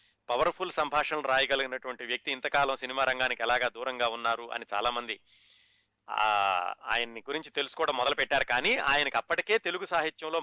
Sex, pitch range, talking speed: male, 120-160 Hz, 130 wpm